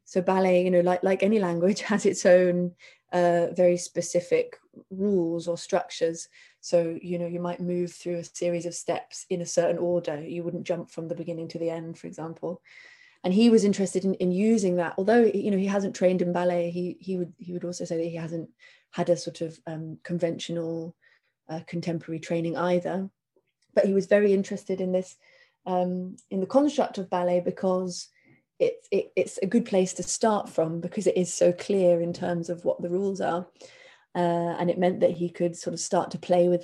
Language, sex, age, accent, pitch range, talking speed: English, female, 20-39, British, 170-190 Hz, 210 wpm